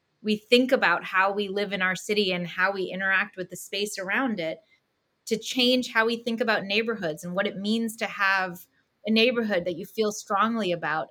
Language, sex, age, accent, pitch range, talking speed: English, female, 20-39, American, 190-225 Hz, 205 wpm